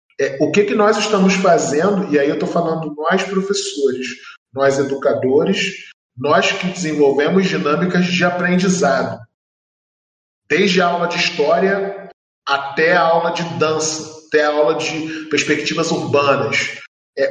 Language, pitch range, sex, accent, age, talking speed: Portuguese, 150-200 Hz, male, Brazilian, 20-39, 135 wpm